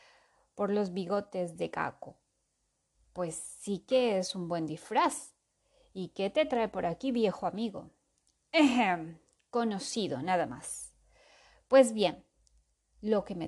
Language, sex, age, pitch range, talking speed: Spanish, female, 20-39, 185-250 Hz, 130 wpm